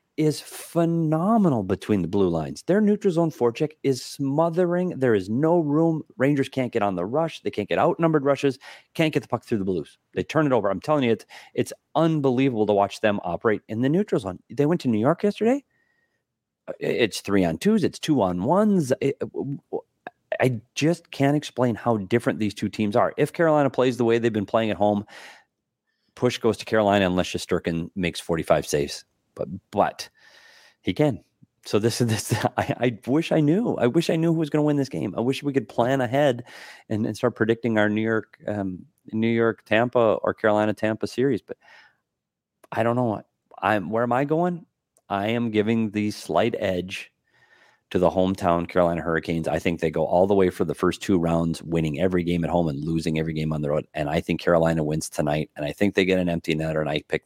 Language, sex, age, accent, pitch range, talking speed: English, male, 40-59, American, 95-150 Hz, 210 wpm